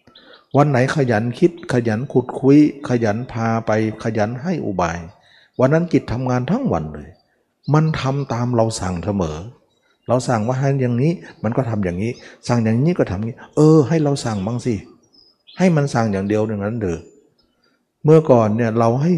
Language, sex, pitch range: Thai, male, 105-140 Hz